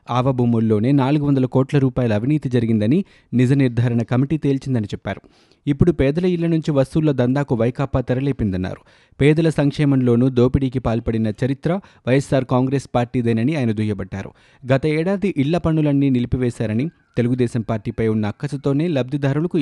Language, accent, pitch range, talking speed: Telugu, native, 115-145 Hz, 120 wpm